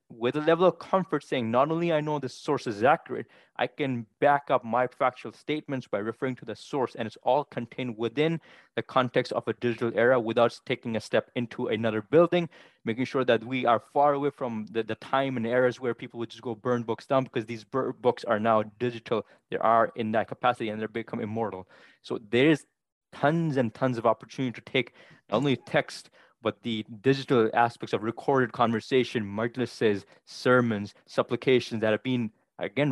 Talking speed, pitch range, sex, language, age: 190 wpm, 115-135 Hz, male, English, 20-39